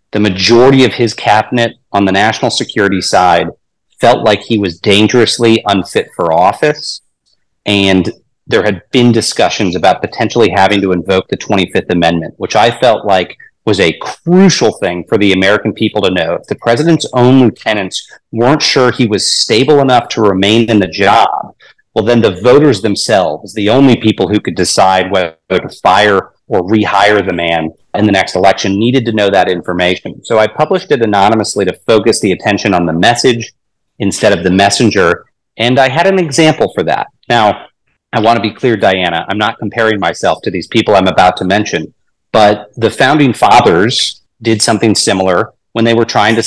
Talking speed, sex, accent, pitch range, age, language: 180 wpm, male, American, 95-115 Hz, 30-49, English